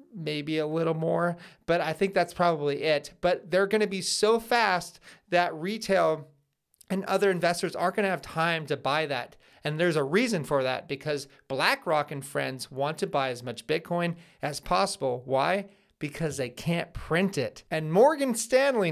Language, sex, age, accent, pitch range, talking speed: English, male, 30-49, American, 150-190 Hz, 180 wpm